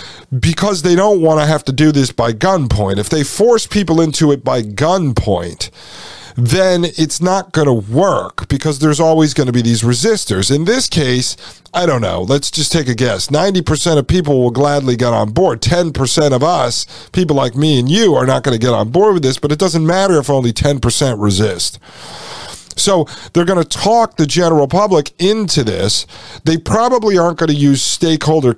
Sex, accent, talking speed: male, American, 195 wpm